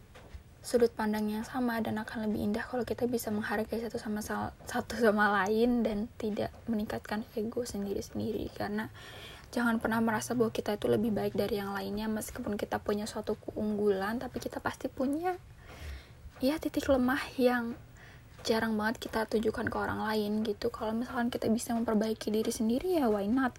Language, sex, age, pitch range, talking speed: Indonesian, female, 10-29, 215-240 Hz, 170 wpm